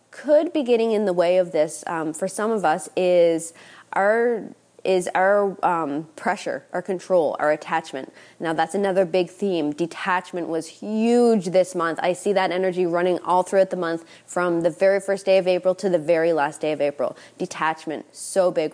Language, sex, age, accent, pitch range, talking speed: English, female, 20-39, American, 175-210 Hz, 190 wpm